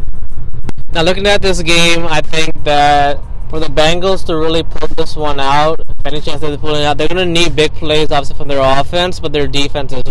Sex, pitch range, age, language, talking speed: male, 130-150 Hz, 20-39, English, 215 wpm